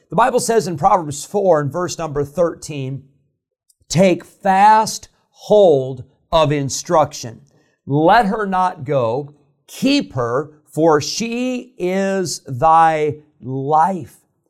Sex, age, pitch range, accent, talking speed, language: male, 50-69, 145-195 Hz, American, 110 wpm, English